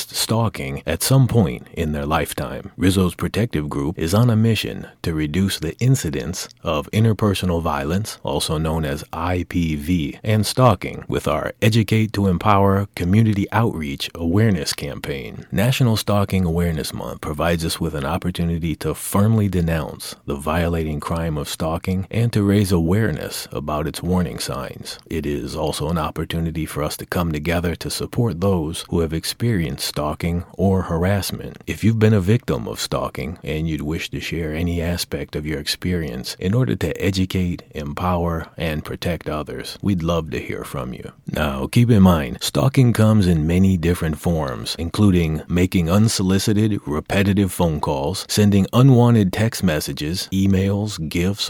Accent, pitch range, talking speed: American, 80-105 Hz, 155 wpm